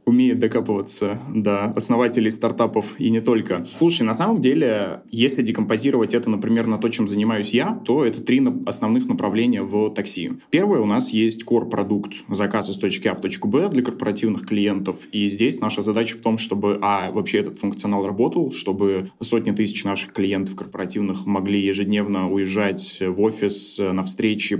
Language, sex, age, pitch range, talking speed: Russian, male, 20-39, 100-115 Hz, 170 wpm